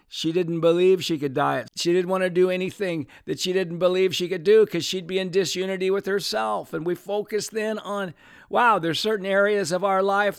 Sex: male